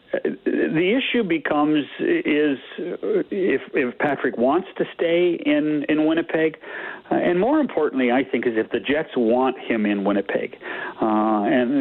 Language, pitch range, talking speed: English, 125-170 Hz, 150 wpm